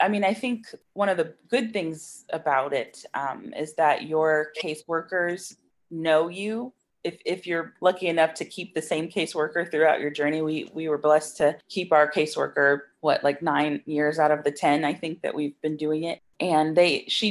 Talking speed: 200 wpm